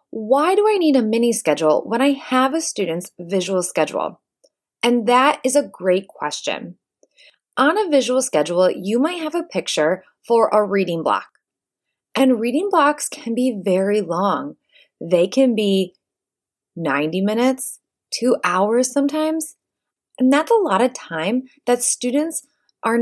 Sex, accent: female, American